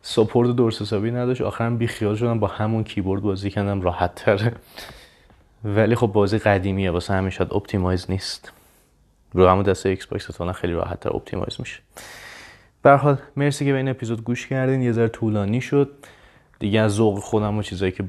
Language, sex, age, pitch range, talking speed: Persian, male, 30-49, 95-115 Hz, 170 wpm